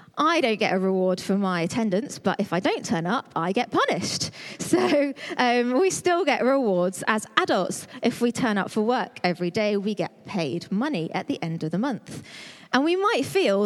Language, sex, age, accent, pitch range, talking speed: English, female, 20-39, British, 200-275 Hz, 205 wpm